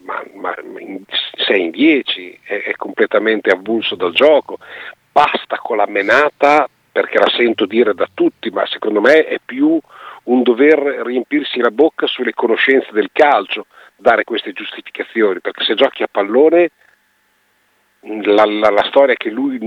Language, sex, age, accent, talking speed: Italian, male, 40-59, native, 150 wpm